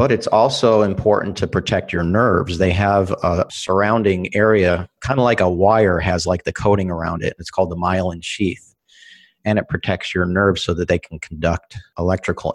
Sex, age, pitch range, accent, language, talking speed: male, 40-59, 90-110 Hz, American, English, 190 wpm